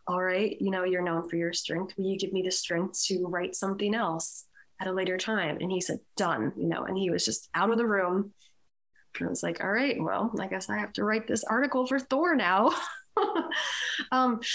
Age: 20-39